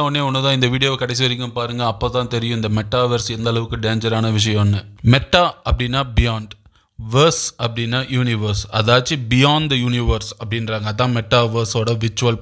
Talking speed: 140 wpm